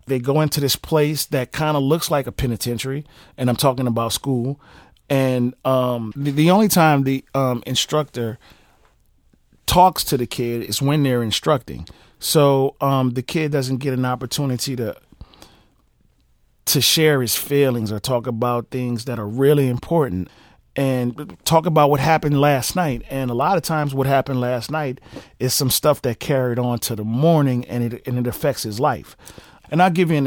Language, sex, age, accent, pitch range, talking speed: English, male, 30-49, American, 120-145 Hz, 180 wpm